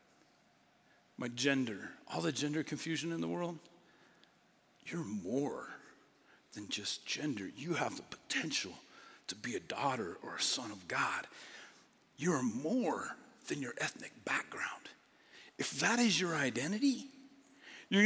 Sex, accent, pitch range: male, American, 145-210 Hz